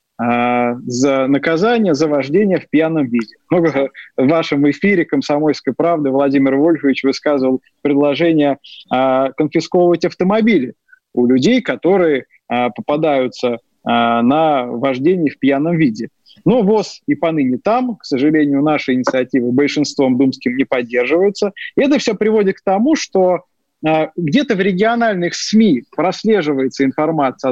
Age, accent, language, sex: 20-39, native, Russian, male